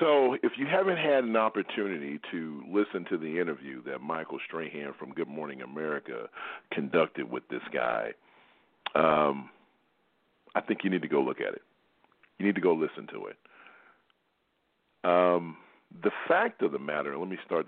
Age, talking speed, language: 50-69, 165 wpm, English